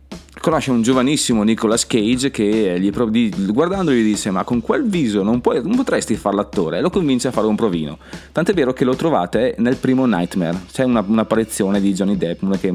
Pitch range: 95-120 Hz